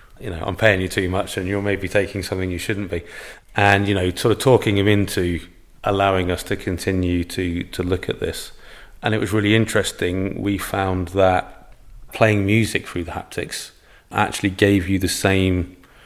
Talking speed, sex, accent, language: 185 wpm, male, British, English